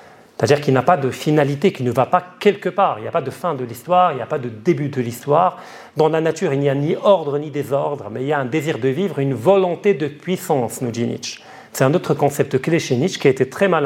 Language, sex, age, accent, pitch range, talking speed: French, male, 40-59, French, 125-180 Hz, 285 wpm